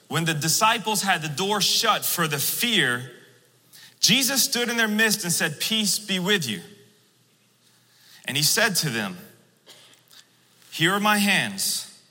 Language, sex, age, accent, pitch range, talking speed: English, male, 30-49, American, 170-220 Hz, 150 wpm